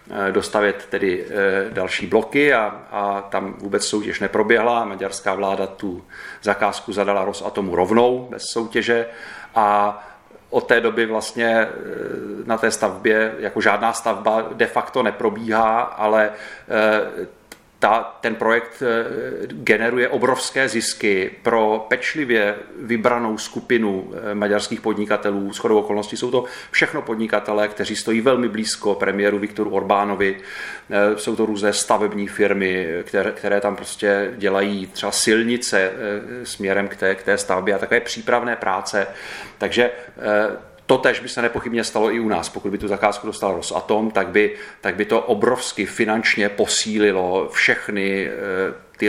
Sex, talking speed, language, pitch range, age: male, 130 wpm, Czech, 100-110 Hz, 40-59